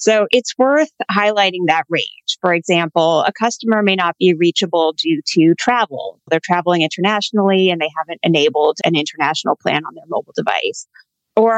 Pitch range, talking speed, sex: 175-220 Hz, 165 wpm, female